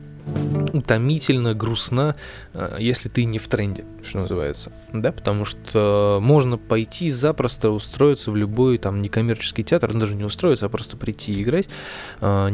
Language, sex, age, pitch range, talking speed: Russian, male, 20-39, 105-120 Hz, 135 wpm